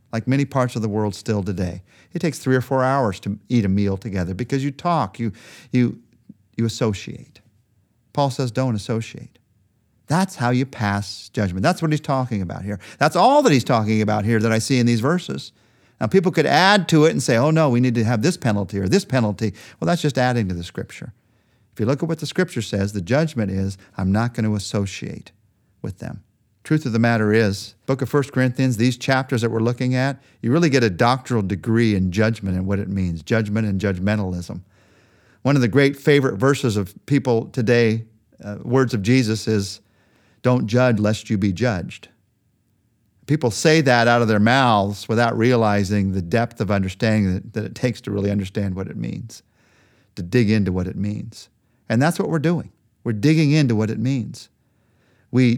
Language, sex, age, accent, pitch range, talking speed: English, male, 50-69, American, 105-130 Hz, 205 wpm